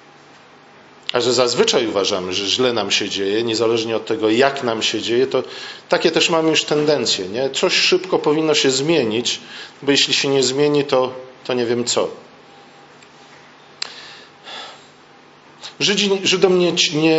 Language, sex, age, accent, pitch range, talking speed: Polish, male, 40-59, native, 130-160 Hz, 130 wpm